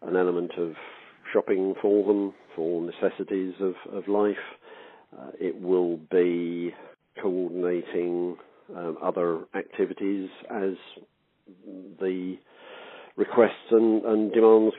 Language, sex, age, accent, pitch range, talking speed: English, male, 50-69, British, 85-105 Hz, 100 wpm